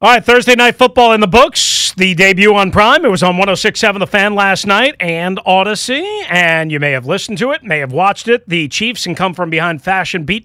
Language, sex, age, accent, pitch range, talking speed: English, male, 30-49, American, 165-215 Hz, 235 wpm